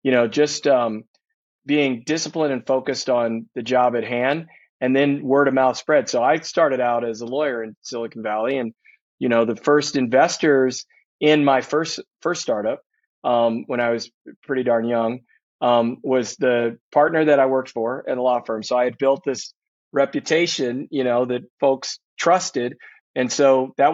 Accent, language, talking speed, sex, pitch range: American, English, 185 wpm, male, 125-145 Hz